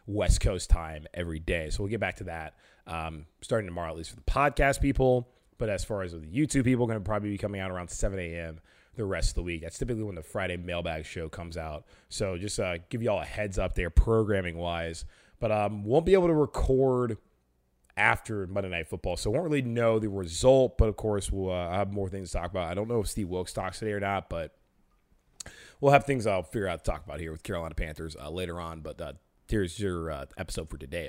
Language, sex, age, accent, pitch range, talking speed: English, male, 30-49, American, 85-115 Hz, 240 wpm